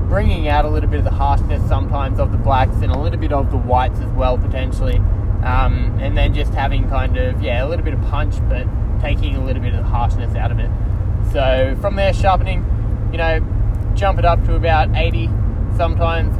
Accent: Australian